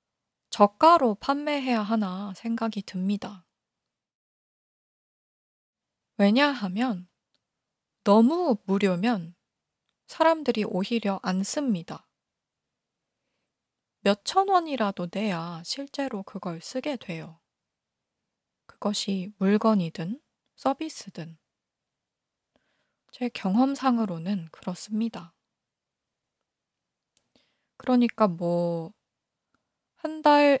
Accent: native